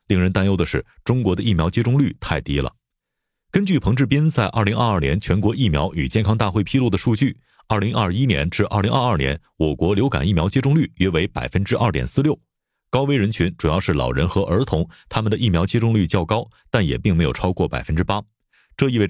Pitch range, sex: 85-120 Hz, male